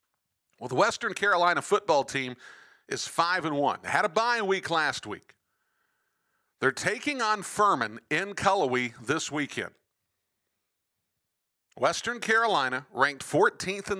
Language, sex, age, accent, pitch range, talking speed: English, male, 50-69, American, 140-195 Hz, 120 wpm